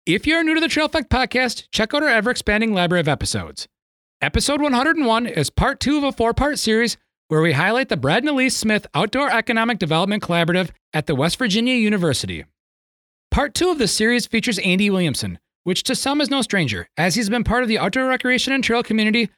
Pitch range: 155-255 Hz